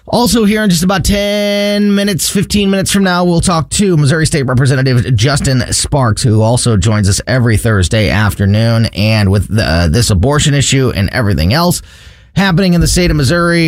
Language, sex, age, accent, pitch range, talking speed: English, male, 30-49, American, 100-145 Hz, 180 wpm